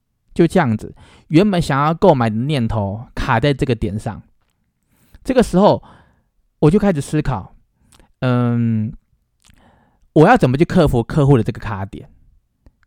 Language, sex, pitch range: Chinese, male, 110-155 Hz